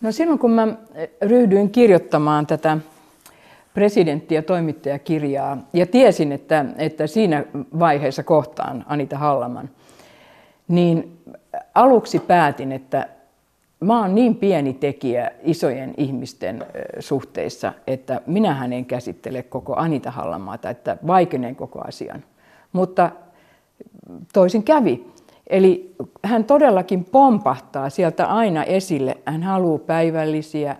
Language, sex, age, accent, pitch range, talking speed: Finnish, female, 50-69, native, 150-205 Hz, 105 wpm